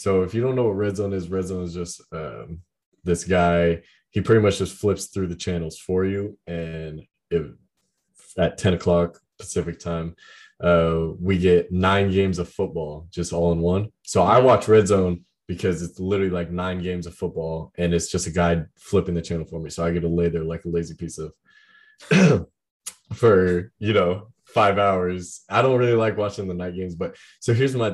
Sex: male